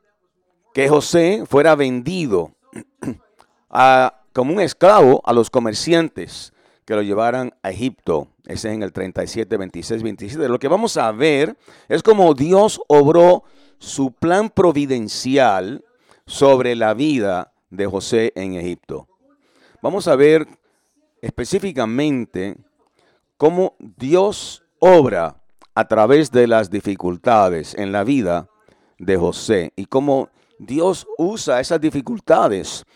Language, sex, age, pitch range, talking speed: English, male, 50-69, 110-165 Hz, 120 wpm